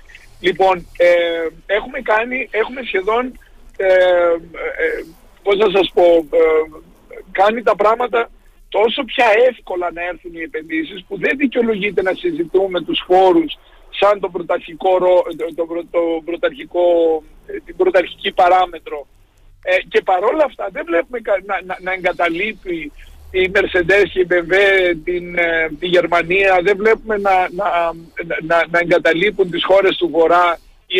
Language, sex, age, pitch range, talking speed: Greek, male, 50-69, 170-240 Hz, 140 wpm